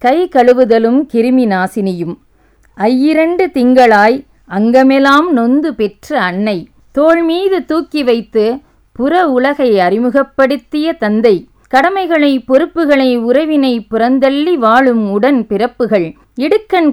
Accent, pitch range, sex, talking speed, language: Indian, 215-290 Hz, female, 90 wpm, English